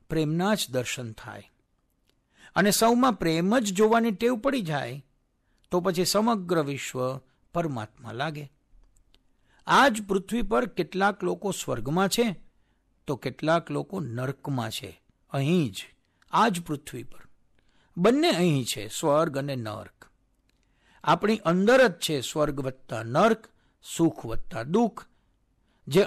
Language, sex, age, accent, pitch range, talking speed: Gujarati, male, 60-79, native, 125-195 Hz, 90 wpm